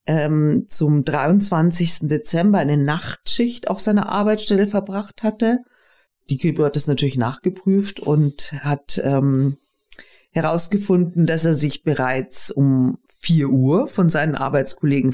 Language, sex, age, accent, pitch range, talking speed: German, female, 50-69, German, 135-190 Hz, 125 wpm